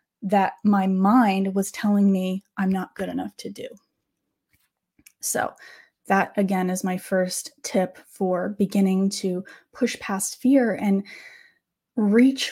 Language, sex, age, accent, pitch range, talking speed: English, female, 20-39, American, 195-240 Hz, 130 wpm